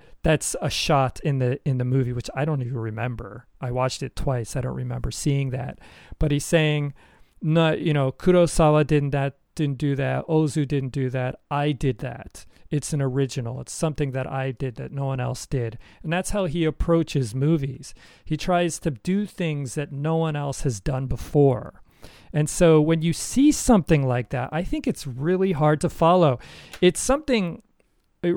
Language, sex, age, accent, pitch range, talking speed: English, male, 40-59, American, 135-170 Hz, 190 wpm